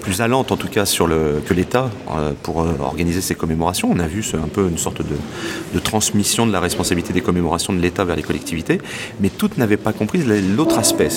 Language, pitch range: English, 85-110 Hz